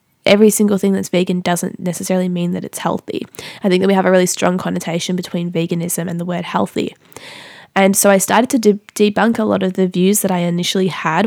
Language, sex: English, female